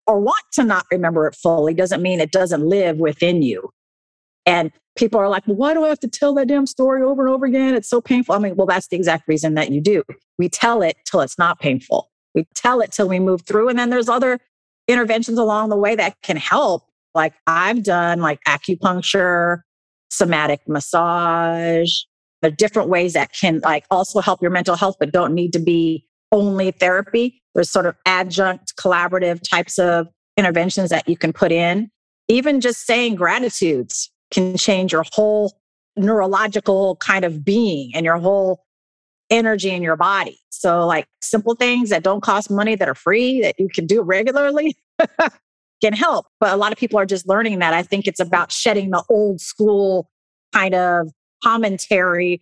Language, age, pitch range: English, 50-69, 175-215 Hz